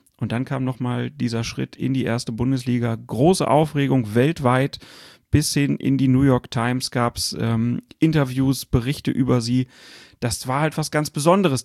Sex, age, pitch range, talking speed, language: male, 40-59, 125-150 Hz, 170 wpm, German